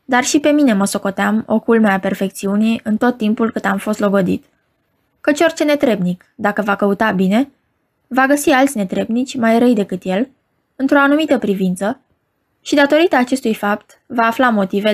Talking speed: 170 wpm